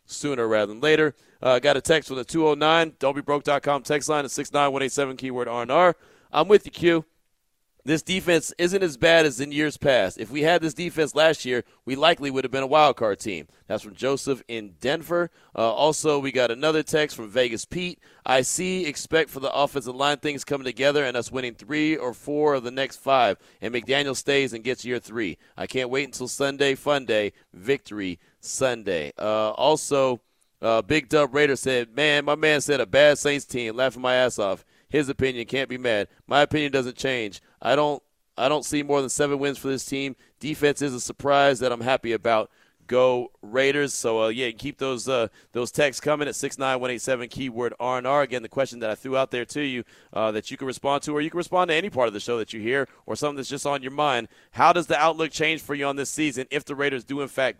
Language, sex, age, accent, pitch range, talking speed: English, male, 30-49, American, 125-150 Hz, 230 wpm